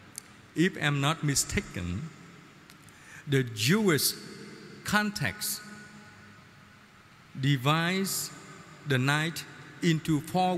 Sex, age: male, 50-69